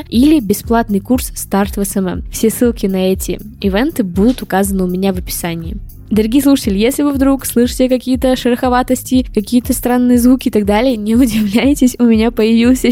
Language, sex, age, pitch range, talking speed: Russian, female, 20-39, 195-240 Hz, 165 wpm